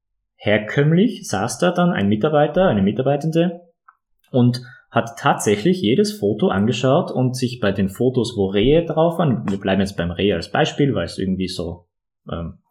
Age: 20-39